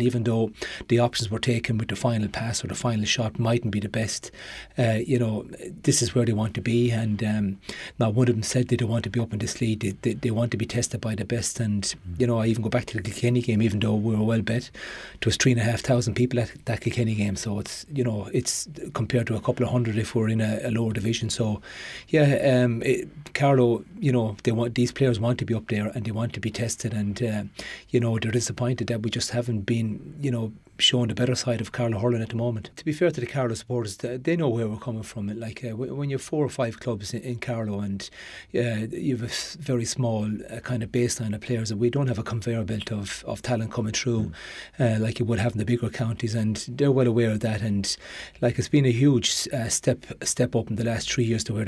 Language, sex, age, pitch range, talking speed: English, male, 30-49, 110-125 Hz, 265 wpm